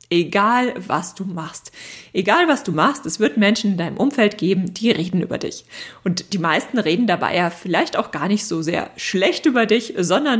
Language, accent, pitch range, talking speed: German, German, 170-225 Hz, 200 wpm